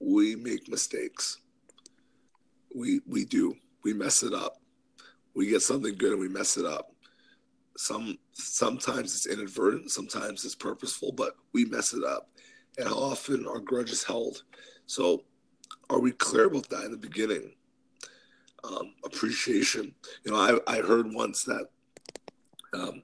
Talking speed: 150 wpm